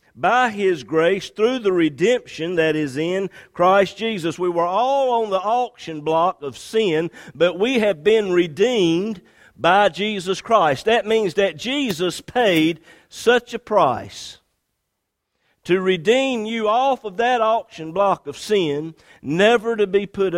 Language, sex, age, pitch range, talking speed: English, male, 50-69, 170-280 Hz, 145 wpm